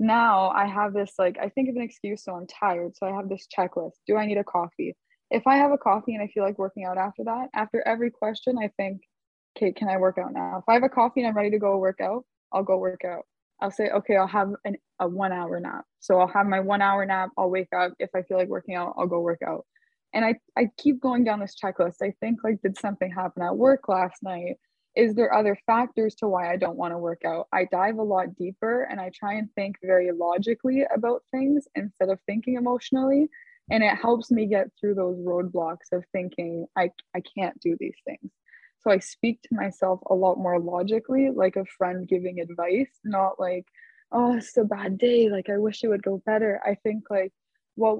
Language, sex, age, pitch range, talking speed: English, female, 20-39, 185-230 Hz, 235 wpm